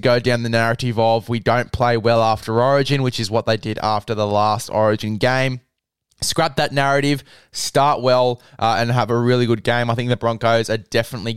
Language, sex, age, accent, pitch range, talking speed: English, male, 20-39, Australian, 115-135 Hz, 205 wpm